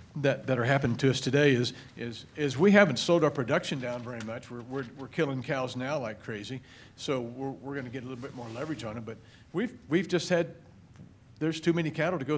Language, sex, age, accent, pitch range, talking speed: English, male, 50-69, American, 110-140 Hz, 240 wpm